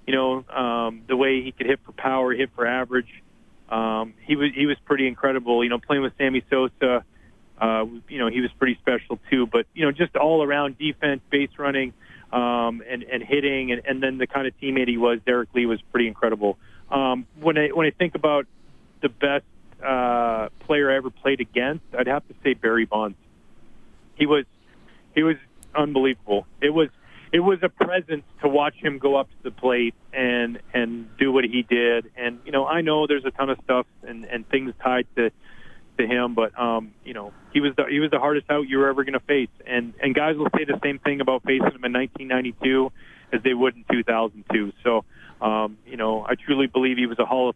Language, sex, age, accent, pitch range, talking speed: English, male, 30-49, American, 115-140 Hz, 215 wpm